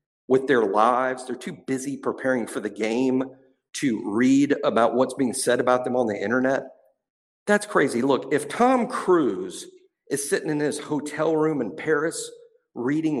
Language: English